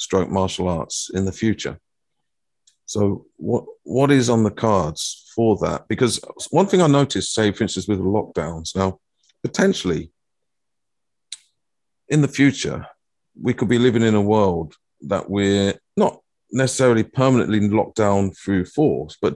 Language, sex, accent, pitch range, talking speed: English, male, British, 95-120 Hz, 150 wpm